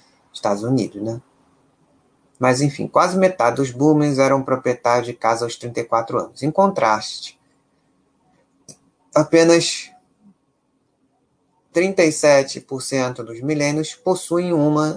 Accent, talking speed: Brazilian, 95 wpm